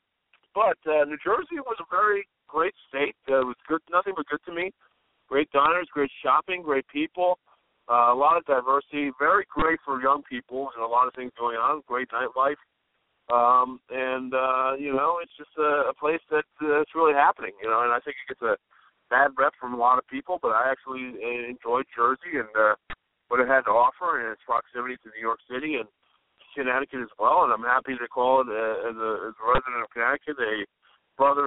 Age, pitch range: 50-69, 125-155 Hz